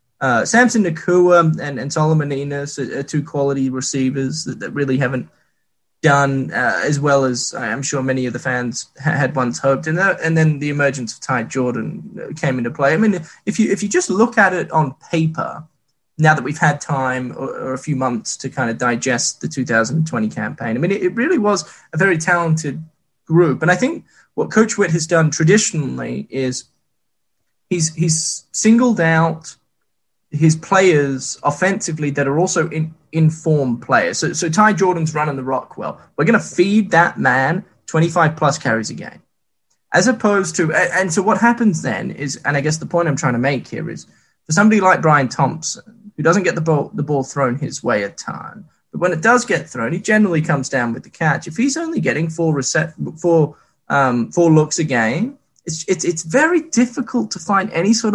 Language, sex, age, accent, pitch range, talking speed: English, male, 20-39, Australian, 135-180 Hz, 200 wpm